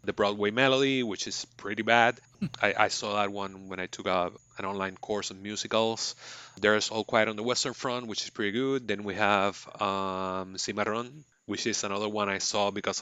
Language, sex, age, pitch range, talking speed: English, male, 30-49, 100-120 Hz, 200 wpm